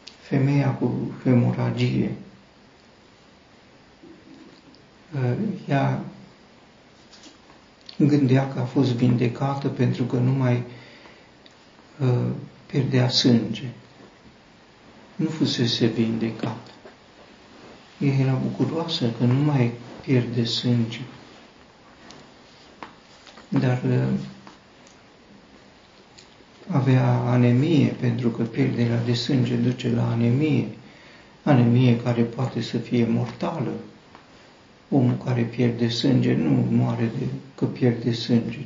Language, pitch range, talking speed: Romanian, 115-135 Hz, 80 wpm